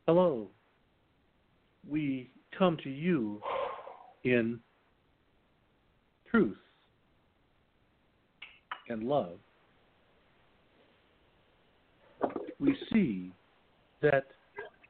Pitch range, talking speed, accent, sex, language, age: 115-160 Hz, 50 wpm, American, male, English, 60-79